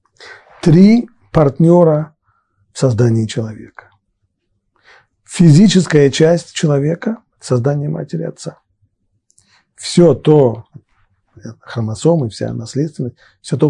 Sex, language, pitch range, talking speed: male, Russian, 105-150 Hz, 80 wpm